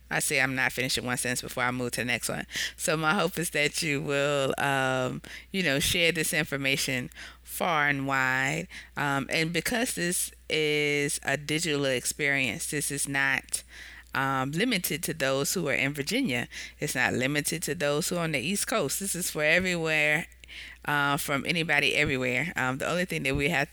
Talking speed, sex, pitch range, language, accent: 190 wpm, female, 130-150 Hz, English, American